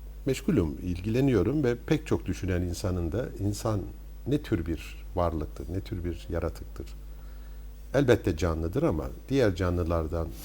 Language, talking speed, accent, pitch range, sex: Turkish, 125 wpm, native, 80-105 Hz, male